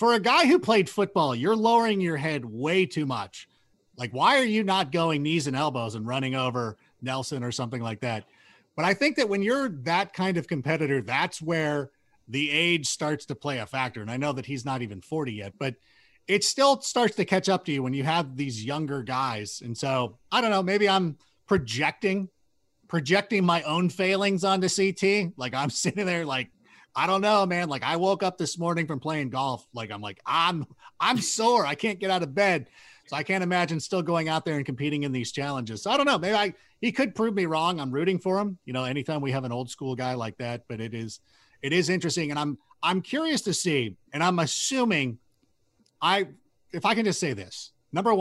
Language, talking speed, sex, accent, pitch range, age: English, 225 wpm, male, American, 130-190 Hz, 30-49